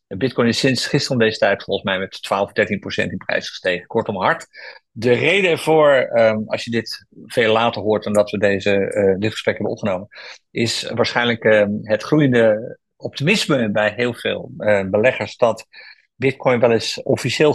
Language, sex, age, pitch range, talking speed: Dutch, male, 50-69, 105-140 Hz, 180 wpm